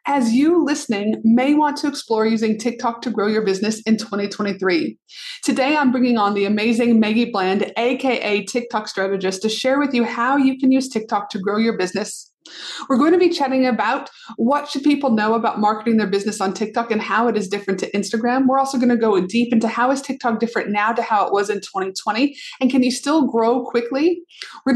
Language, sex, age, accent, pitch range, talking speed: English, female, 30-49, American, 215-255 Hz, 210 wpm